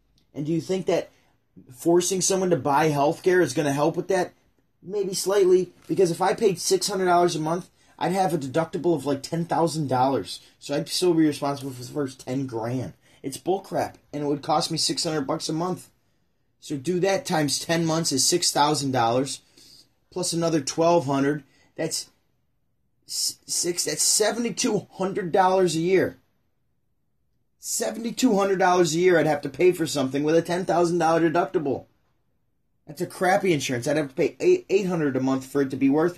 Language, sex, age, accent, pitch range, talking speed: English, male, 30-49, American, 140-180 Hz, 175 wpm